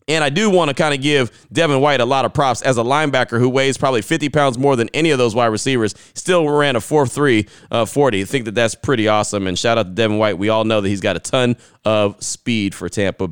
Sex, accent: male, American